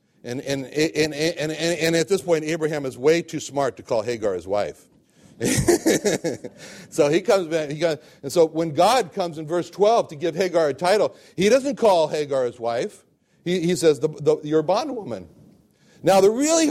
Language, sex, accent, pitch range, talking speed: English, male, American, 145-195 Hz, 195 wpm